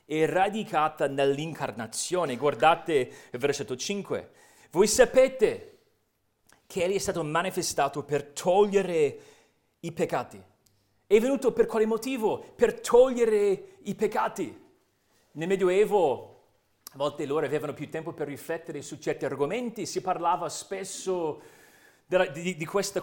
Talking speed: 115 wpm